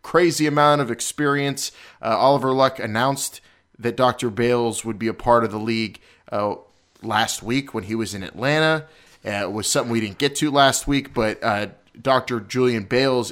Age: 30-49